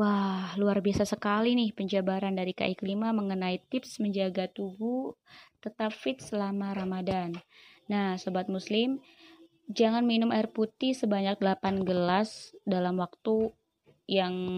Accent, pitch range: native, 180-215 Hz